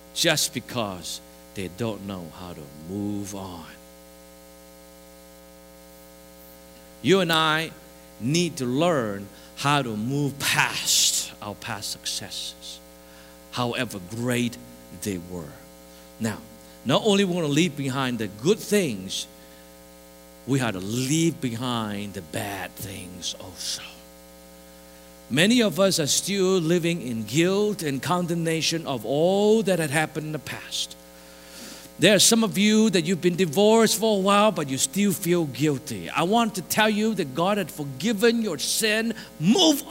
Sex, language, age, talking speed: male, English, 50-69, 140 wpm